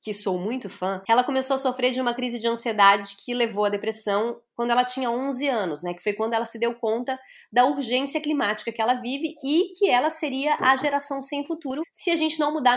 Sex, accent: female, Brazilian